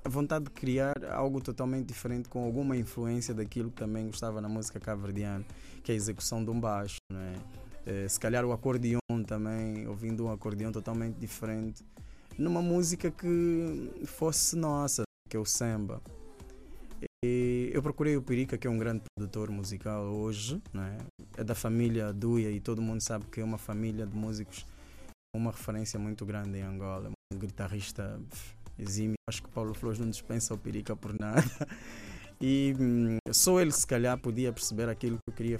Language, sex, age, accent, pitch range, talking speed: Portuguese, male, 20-39, Brazilian, 105-125 Hz, 175 wpm